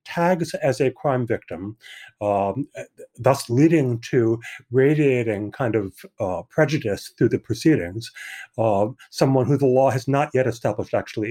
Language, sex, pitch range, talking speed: English, male, 105-135 Hz, 145 wpm